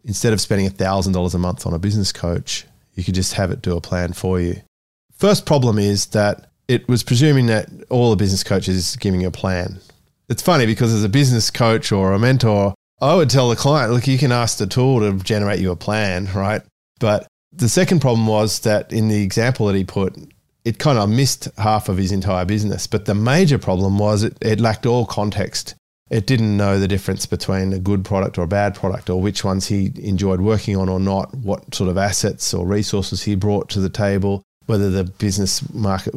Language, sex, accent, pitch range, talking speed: English, male, Australian, 95-120 Hz, 220 wpm